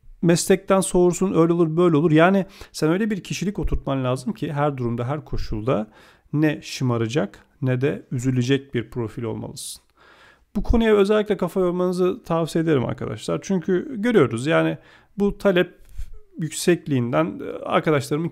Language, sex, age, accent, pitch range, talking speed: Turkish, male, 40-59, native, 130-180 Hz, 135 wpm